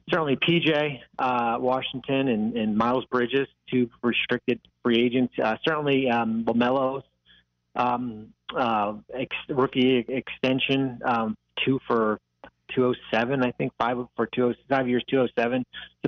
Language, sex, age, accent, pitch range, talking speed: English, male, 30-49, American, 115-130 Hz, 125 wpm